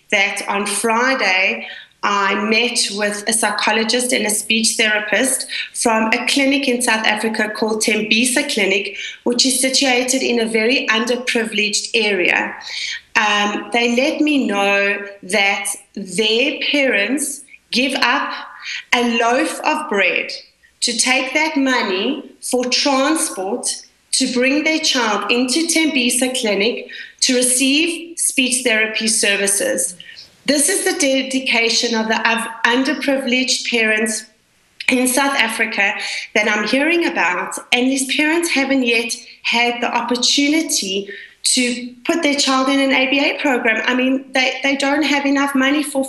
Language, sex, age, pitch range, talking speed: English, female, 30-49, 220-270 Hz, 130 wpm